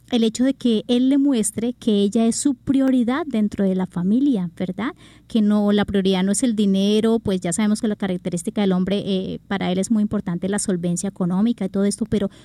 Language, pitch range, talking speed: Spanish, 195-250 Hz, 220 wpm